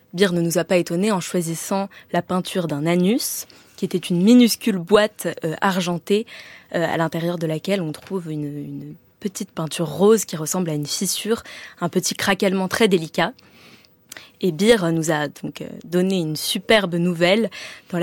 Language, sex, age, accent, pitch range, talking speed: French, female, 20-39, French, 170-205 Hz, 170 wpm